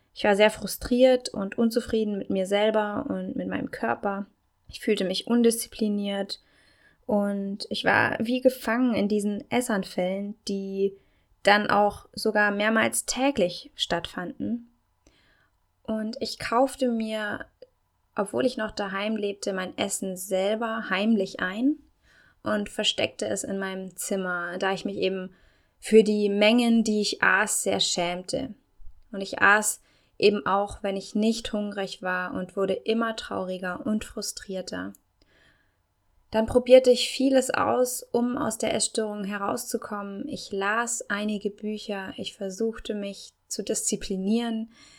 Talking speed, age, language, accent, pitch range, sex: 130 wpm, 20-39, German, German, 195-230 Hz, female